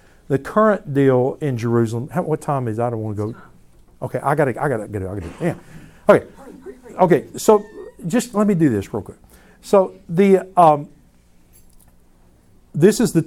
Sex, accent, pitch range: male, American, 125-195 Hz